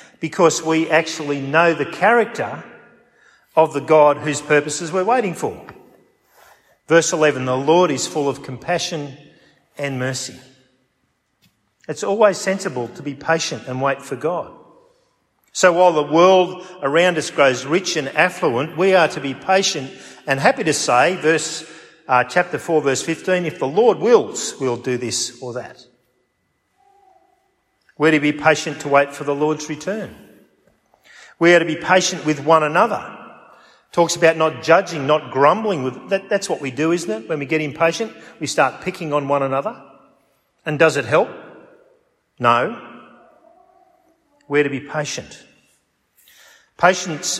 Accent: Australian